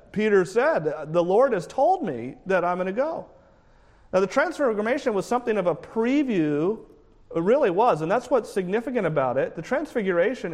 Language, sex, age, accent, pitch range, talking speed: English, male, 40-59, American, 170-240 Hz, 170 wpm